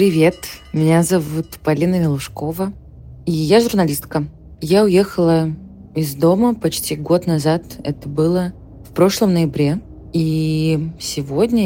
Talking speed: 115 wpm